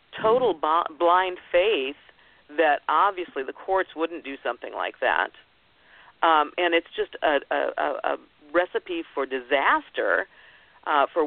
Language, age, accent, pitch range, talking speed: English, 50-69, American, 145-200 Hz, 130 wpm